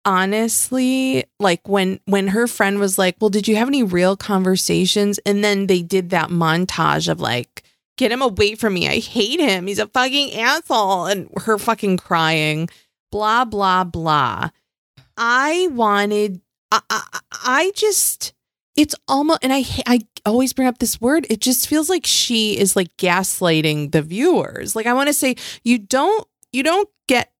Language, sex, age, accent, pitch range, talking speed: English, female, 30-49, American, 165-235 Hz, 170 wpm